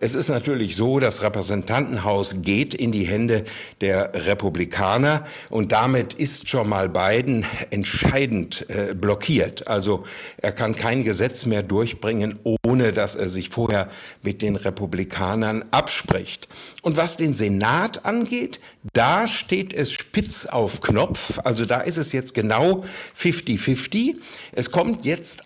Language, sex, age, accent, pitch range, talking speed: German, male, 60-79, German, 105-150 Hz, 135 wpm